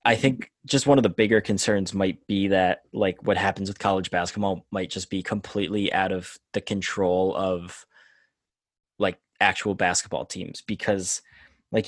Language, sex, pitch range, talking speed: English, male, 95-110 Hz, 160 wpm